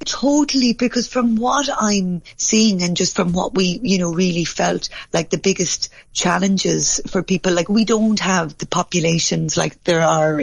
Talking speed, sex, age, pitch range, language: 175 wpm, female, 30-49, 170-215 Hz, English